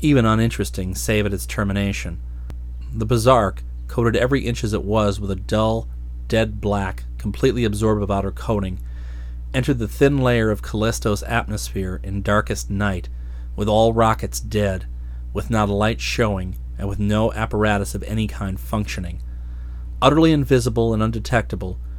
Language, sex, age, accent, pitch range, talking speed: English, male, 40-59, American, 90-110 Hz, 150 wpm